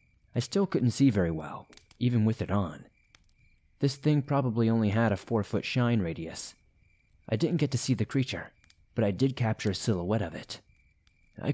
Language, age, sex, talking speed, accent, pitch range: English, 30-49, male, 185 wpm, American, 95-130 Hz